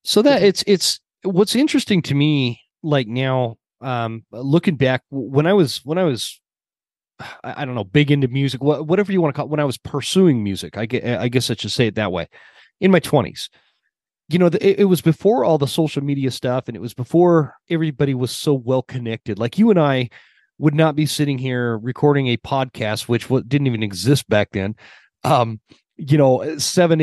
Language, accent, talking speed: English, American, 200 wpm